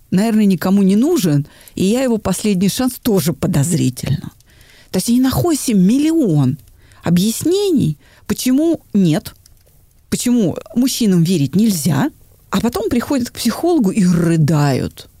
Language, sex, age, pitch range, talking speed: Russian, female, 40-59, 155-245 Hz, 110 wpm